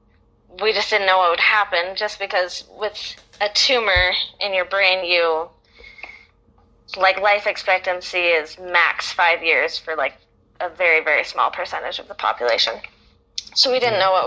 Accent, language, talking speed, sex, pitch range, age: American, English, 160 wpm, female, 170-210 Hz, 20-39